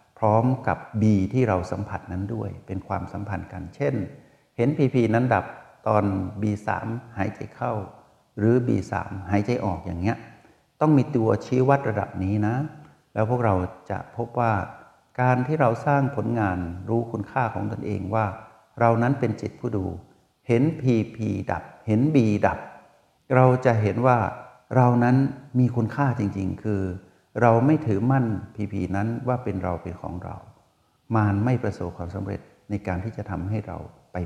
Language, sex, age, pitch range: Thai, male, 60-79, 100-125 Hz